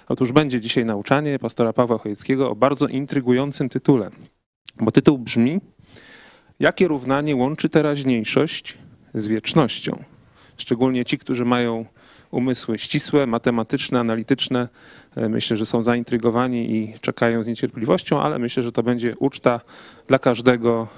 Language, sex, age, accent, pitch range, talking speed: Polish, male, 30-49, native, 110-130 Hz, 125 wpm